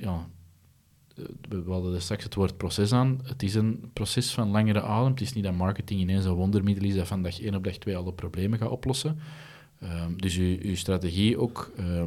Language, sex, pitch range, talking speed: Dutch, male, 90-105 Hz, 200 wpm